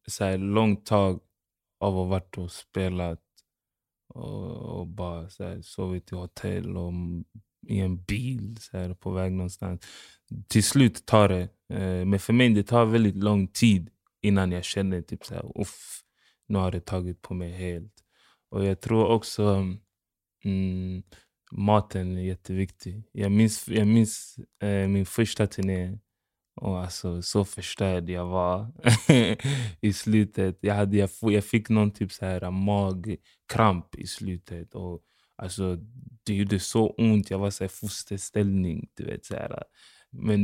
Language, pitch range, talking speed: English, 95-110 Hz, 150 wpm